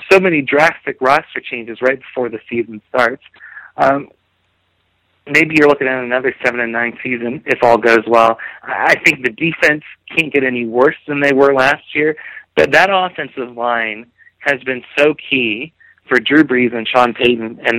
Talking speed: 175 wpm